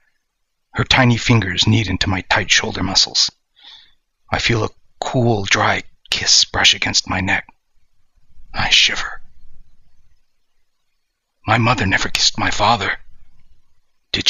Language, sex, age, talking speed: English, male, 40-59, 120 wpm